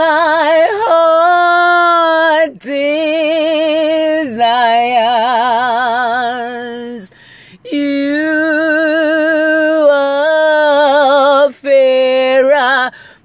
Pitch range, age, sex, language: 245-320 Hz, 40-59, female, English